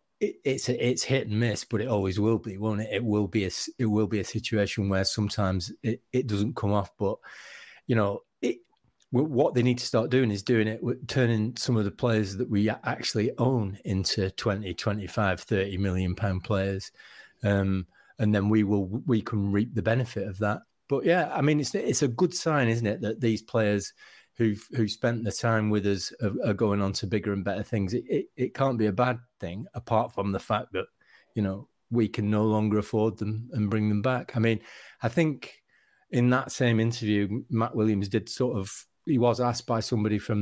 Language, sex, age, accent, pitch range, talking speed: English, male, 30-49, British, 100-115 Hz, 215 wpm